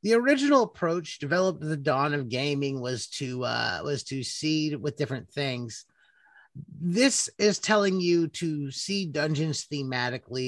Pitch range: 140-185 Hz